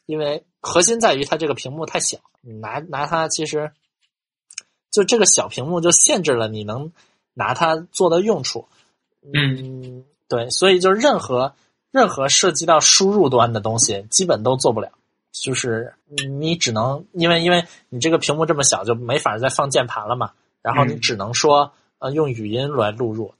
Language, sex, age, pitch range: Chinese, male, 20-39, 120-160 Hz